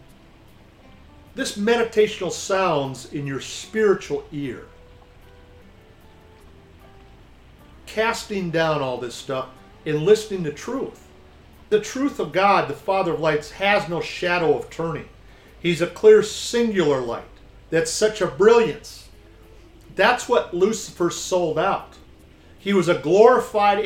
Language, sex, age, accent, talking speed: English, male, 50-69, American, 120 wpm